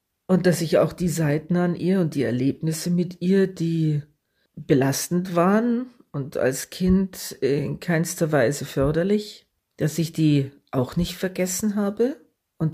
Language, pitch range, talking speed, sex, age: German, 150-185 Hz, 145 wpm, female, 50-69